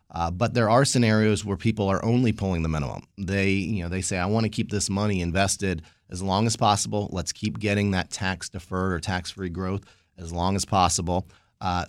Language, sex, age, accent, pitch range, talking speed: English, male, 30-49, American, 90-105 Hz, 205 wpm